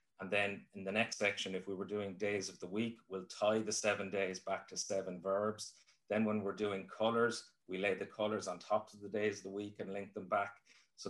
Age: 30-49